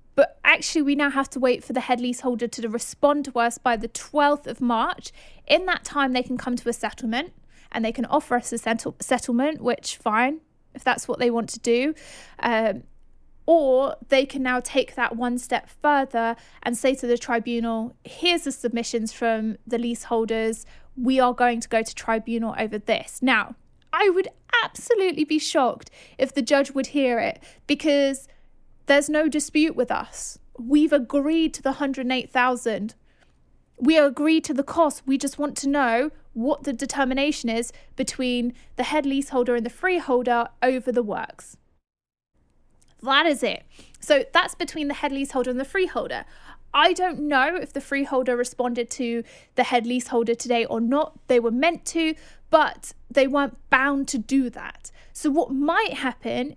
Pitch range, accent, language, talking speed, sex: 240-290 Hz, British, English, 175 wpm, female